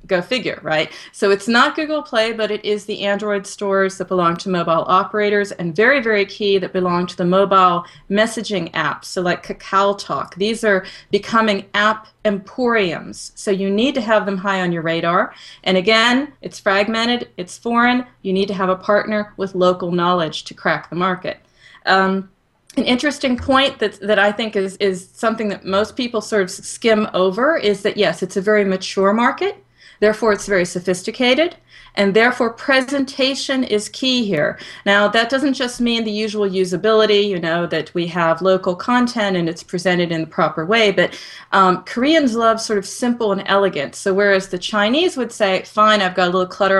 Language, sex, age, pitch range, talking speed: English, female, 40-59, 185-230 Hz, 190 wpm